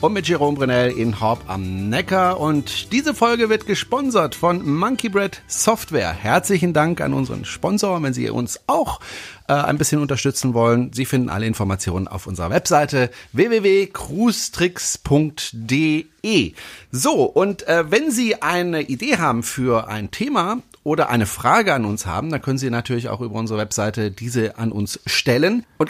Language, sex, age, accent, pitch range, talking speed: German, male, 40-59, German, 125-195 Hz, 160 wpm